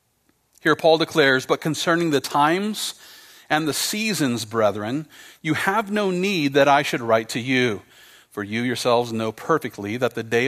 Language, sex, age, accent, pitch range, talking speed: English, male, 40-59, American, 115-155 Hz, 165 wpm